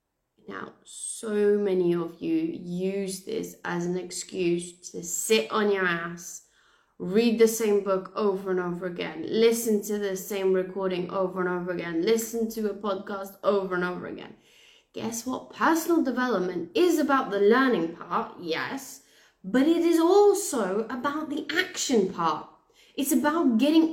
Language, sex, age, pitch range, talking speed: English, female, 20-39, 195-290 Hz, 155 wpm